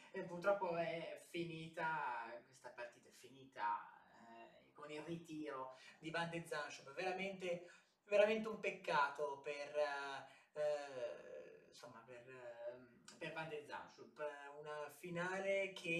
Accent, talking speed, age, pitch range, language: native, 100 wpm, 20-39, 160-205 Hz, Italian